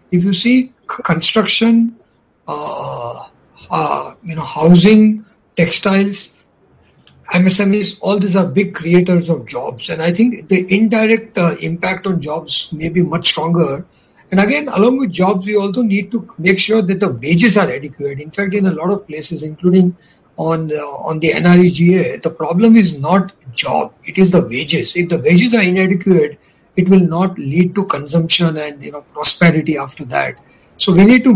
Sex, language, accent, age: male, English, Indian, 50-69